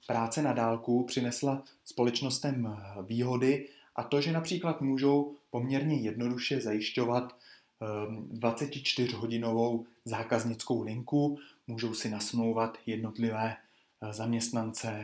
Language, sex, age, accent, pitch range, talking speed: Czech, male, 20-39, native, 115-145 Hz, 90 wpm